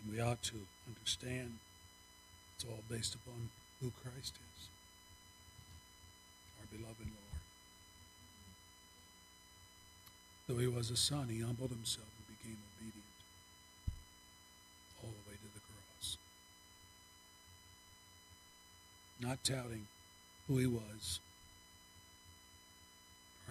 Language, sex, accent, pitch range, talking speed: English, male, American, 85-120 Hz, 95 wpm